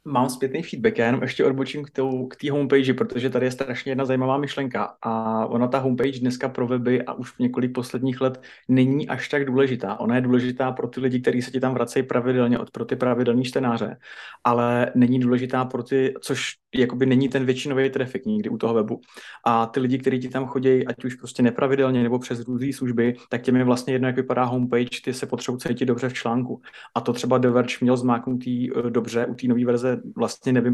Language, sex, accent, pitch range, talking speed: Czech, male, native, 120-130 Hz, 205 wpm